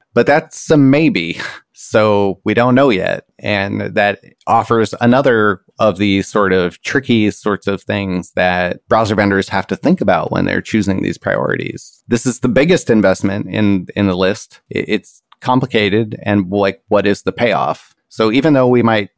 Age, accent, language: 30-49, American, English